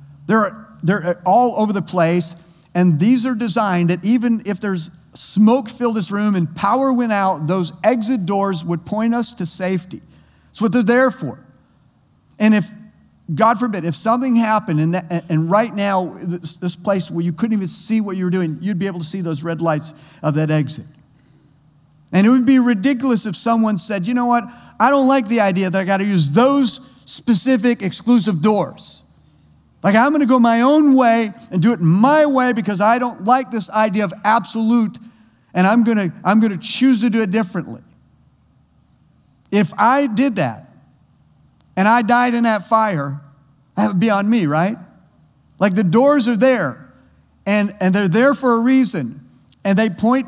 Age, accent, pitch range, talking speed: 50-69, American, 170-230 Hz, 185 wpm